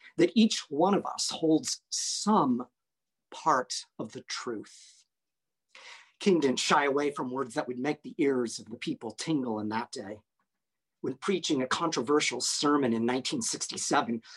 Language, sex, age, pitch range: English, male, 50-69, 125-190 Hz